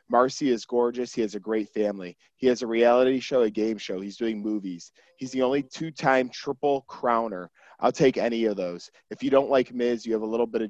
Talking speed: 230 wpm